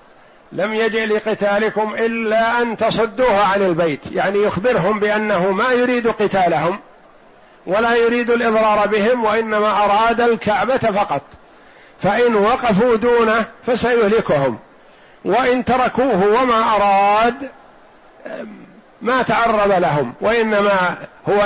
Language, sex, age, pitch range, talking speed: Arabic, male, 50-69, 195-225 Hz, 100 wpm